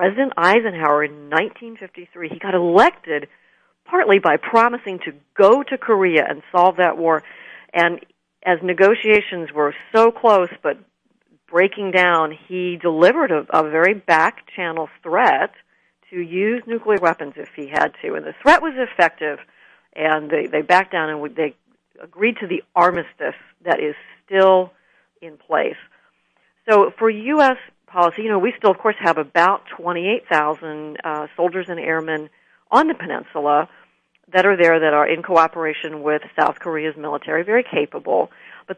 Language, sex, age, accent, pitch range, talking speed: English, female, 50-69, American, 160-205 Hz, 150 wpm